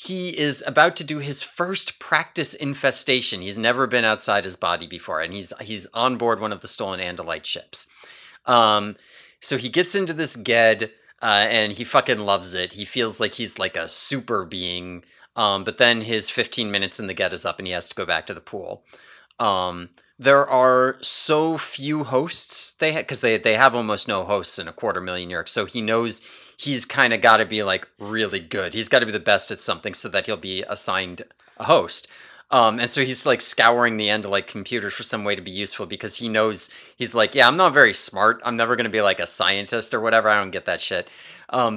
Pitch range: 105-140 Hz